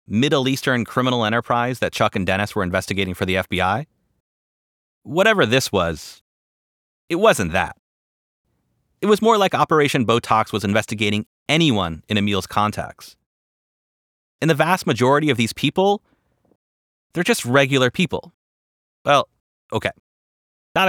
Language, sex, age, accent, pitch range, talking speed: English, male, 30-49, American, 90-135 Hz, 130 wpm